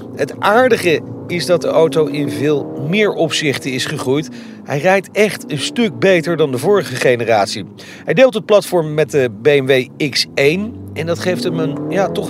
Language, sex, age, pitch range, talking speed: Dutch, male, 40-59, 135-195 Hz, 175 wpm